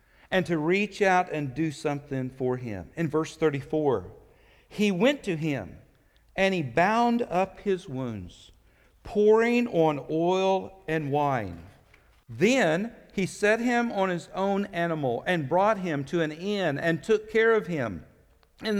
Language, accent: English, American